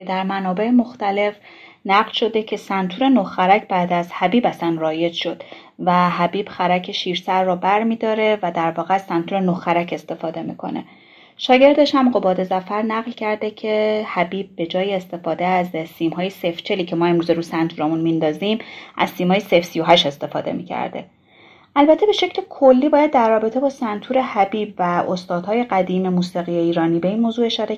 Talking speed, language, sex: 155 wpm, Persian, female